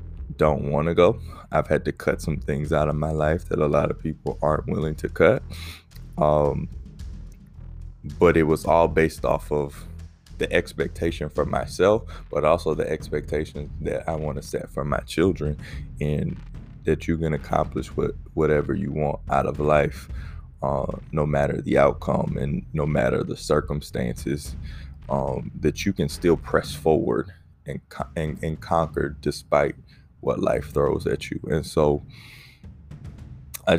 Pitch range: 75-85 Hz